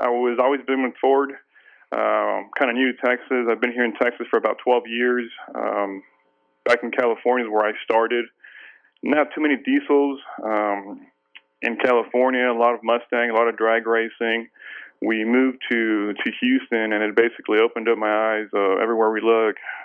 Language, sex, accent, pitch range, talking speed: English, male, American, 105-125 Hz, 185 wpm